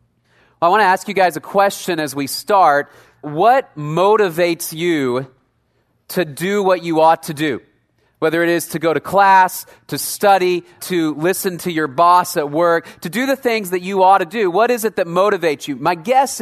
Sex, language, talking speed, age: male, English, 195 wpm, 30-49